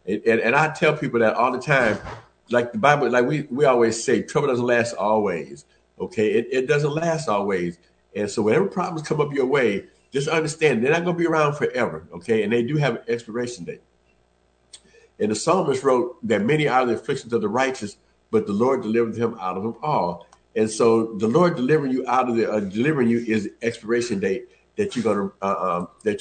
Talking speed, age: 220 wpm, 50-69